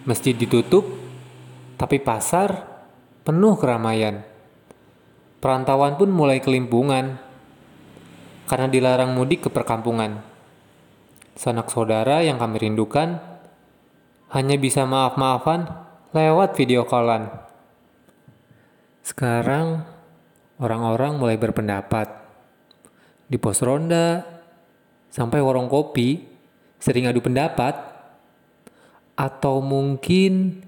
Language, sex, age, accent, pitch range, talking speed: Indonesian, male, 20-39, native, 115-145 Hz, 80 wpm